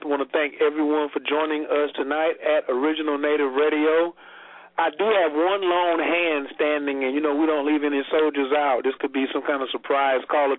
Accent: American